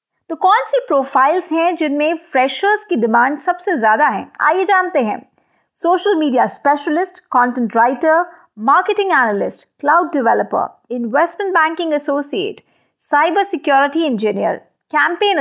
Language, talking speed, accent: Hindi, 120 wpm, native